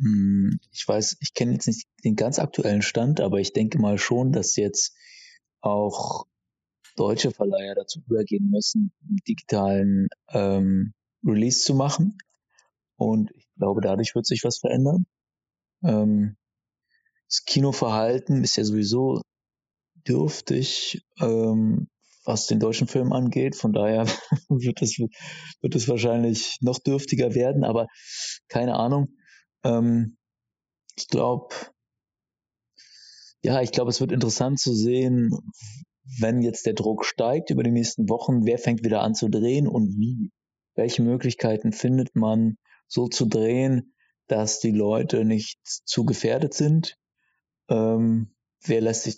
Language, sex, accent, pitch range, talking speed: German, male, German, 110-140 Hz, 130 wpm